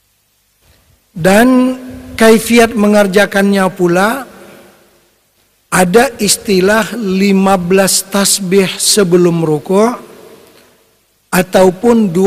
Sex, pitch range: male, 160-200 Hz